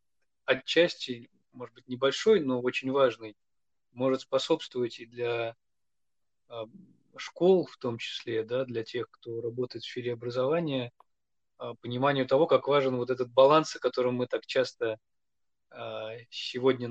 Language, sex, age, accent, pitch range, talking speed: Russian, male, 20-39, native, 120-135 Hz, 130 wpm